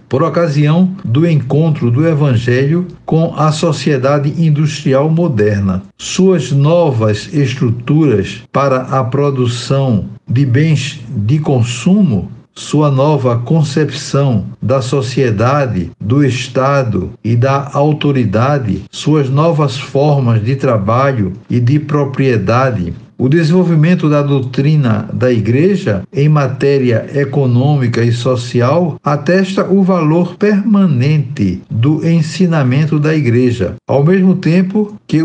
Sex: male